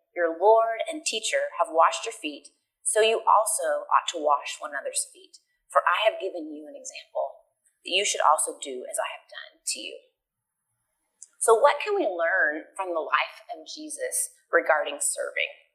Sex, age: female, 30-49